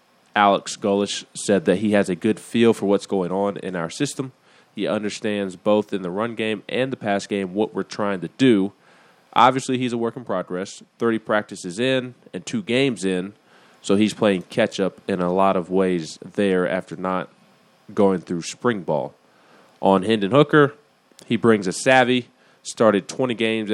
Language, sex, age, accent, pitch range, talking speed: English, male, 20-39, American, 95-115 Hz, 180 wpm